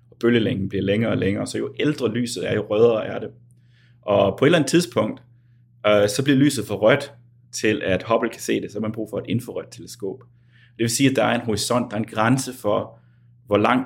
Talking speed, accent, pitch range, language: 240 wpm, native, 105-125 Hz, Danish